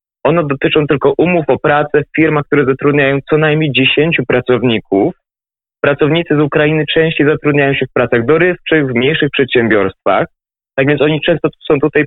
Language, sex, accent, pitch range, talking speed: Polish, male, native, 135-160 Hz, 160 wpm